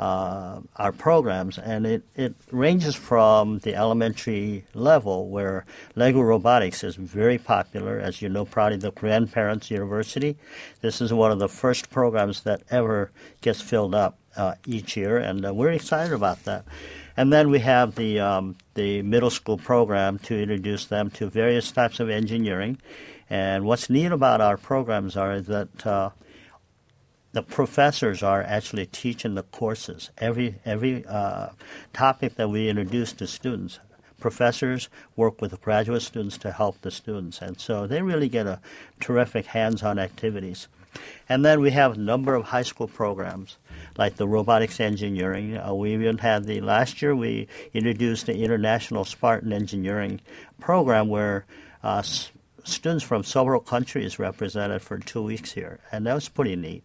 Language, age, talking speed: English, 50-69, 160 wpm